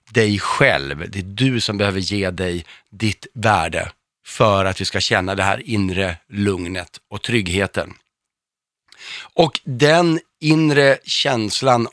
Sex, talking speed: male, 130 wpm